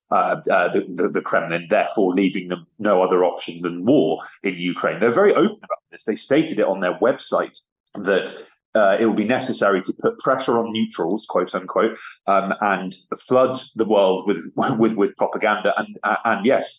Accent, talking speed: British, 185 wpm